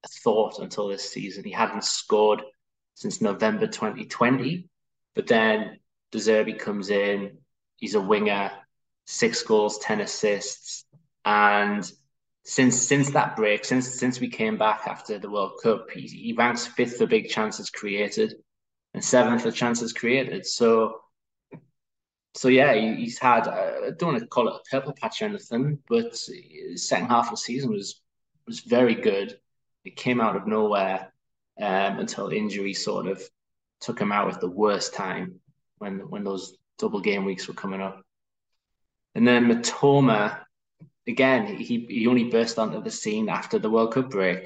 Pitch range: 105-145 Hz